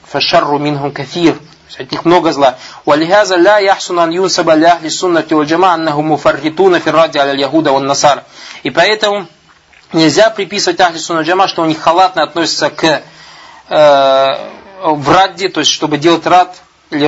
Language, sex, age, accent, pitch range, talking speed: Russian, male, 20-39, native, 145-175 Hz, 85 wpm